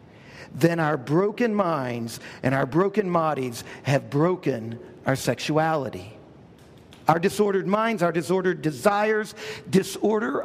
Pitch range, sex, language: 155-210 Hz, male, English